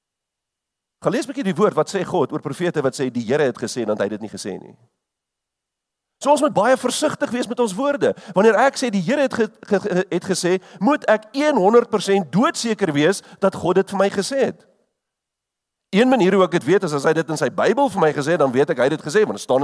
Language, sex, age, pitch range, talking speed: English, male, 50-69, 160-235 Hz, 240 wpm